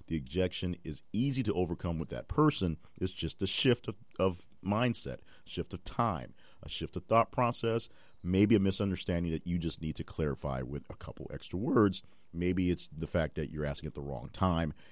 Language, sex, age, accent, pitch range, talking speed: English, male, 40-59, American, 75-95 Hz, 195 wpm